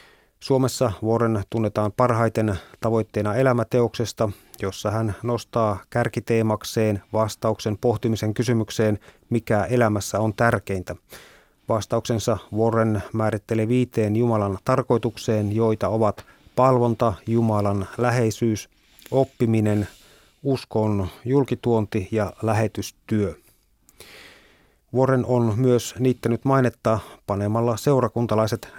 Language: Finnish